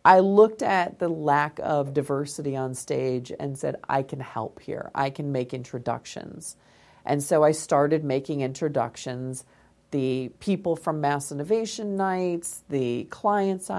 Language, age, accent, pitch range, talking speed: English, 40-59, American, 135-170 Hz, 145 wpm